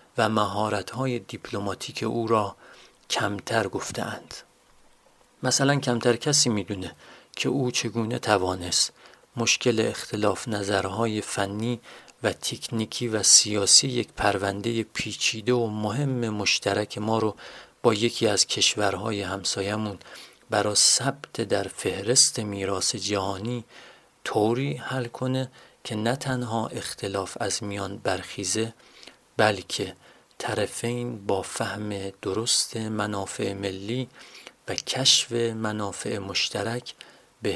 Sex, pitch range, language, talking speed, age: male, 100-120 Hz, Persian, 105 wpm, 40-59